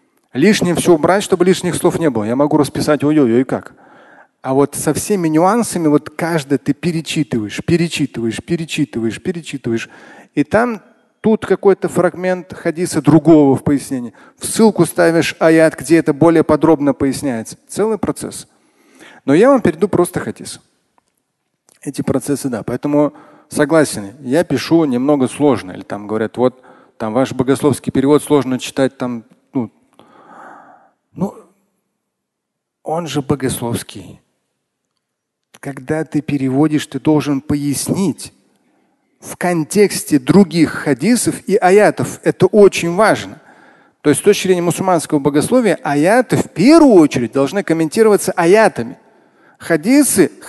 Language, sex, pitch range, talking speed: Russian, male, 140-185 Hz, 125 wpm